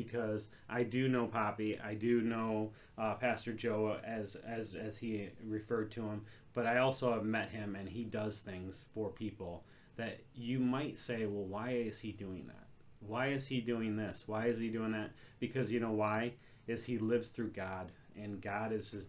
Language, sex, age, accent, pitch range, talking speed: English, male, 30-49, American, 105-125 Hz, 200 wpm